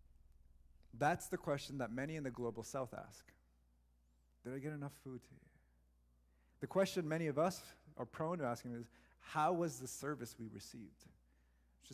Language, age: English, 30-49